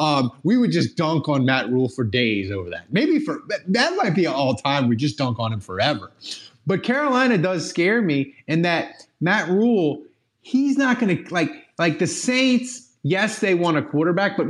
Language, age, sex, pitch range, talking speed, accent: English, 30-49, male, 125-190 Hz, 195 wpm, American